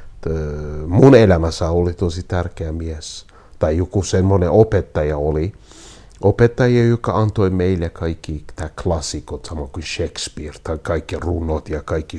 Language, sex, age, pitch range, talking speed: Finnish, male, 50-69, 85-130 Hz, 130 wpm